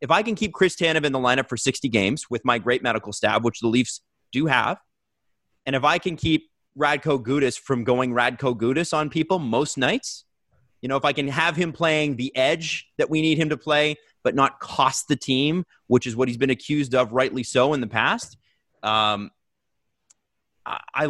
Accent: American